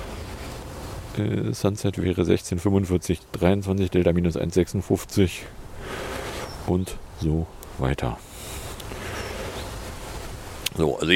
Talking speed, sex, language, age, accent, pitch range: 65 wpm, male, English, 40-59, German, 95-115 Hz